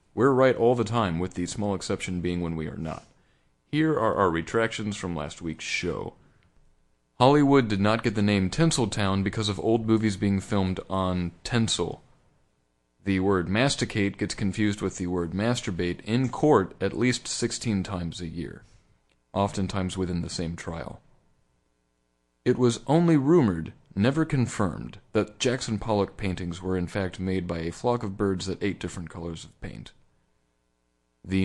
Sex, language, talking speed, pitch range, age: male, English, 160 wpm, 90-120 Hz, 30-49